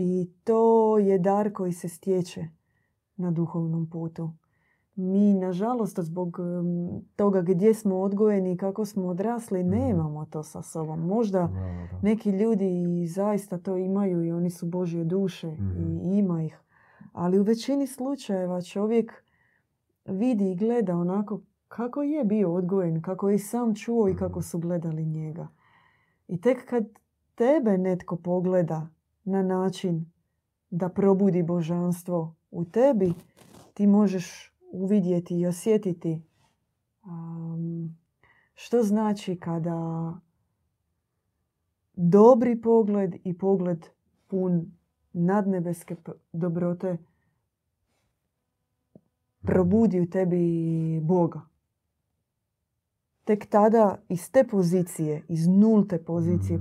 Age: 20-39